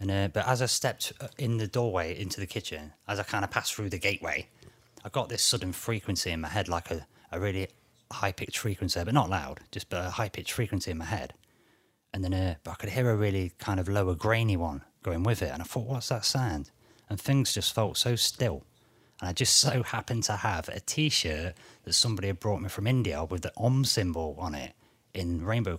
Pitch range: 90-115 Hz